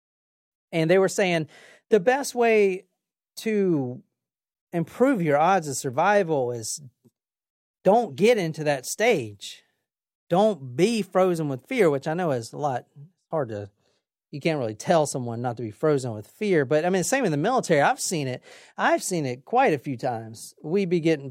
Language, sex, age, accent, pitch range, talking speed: English, male, 40-59, American, 135-195 Hz, 180 wpm